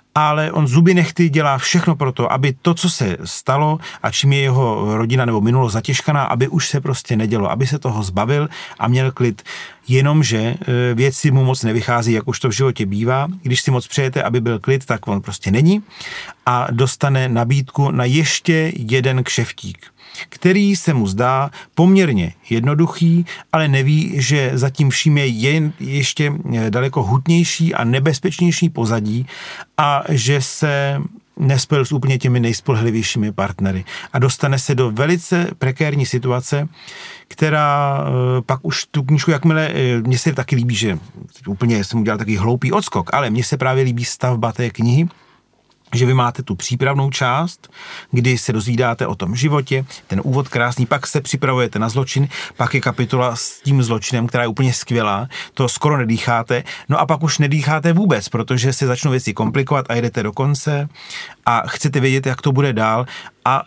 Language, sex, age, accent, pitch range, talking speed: Czech, male, 40-59, native, 120-150 Hz, 165 wpm